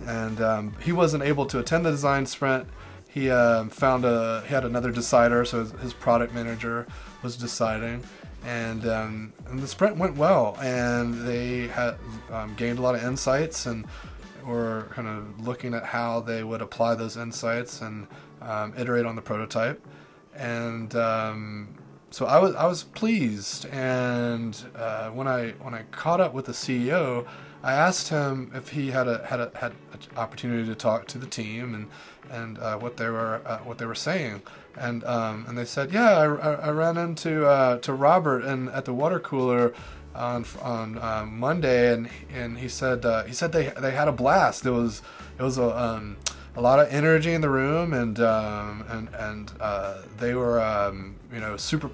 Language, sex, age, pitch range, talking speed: English, male, 30-49, 110-130 Hz, 190 wpm